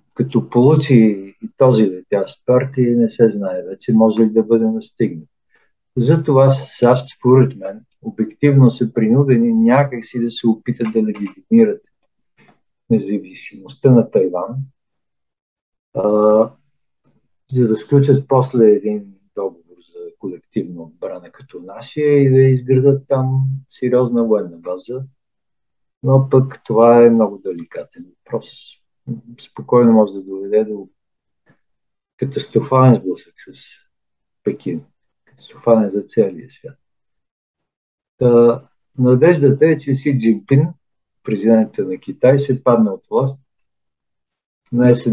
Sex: male